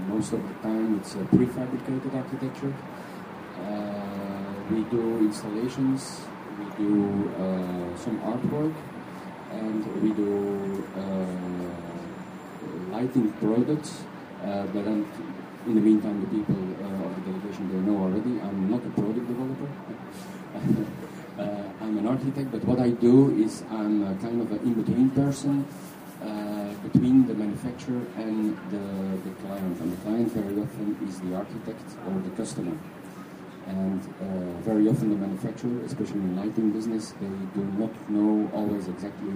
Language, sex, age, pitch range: Chinese, male, 40-59, 95-115 Hz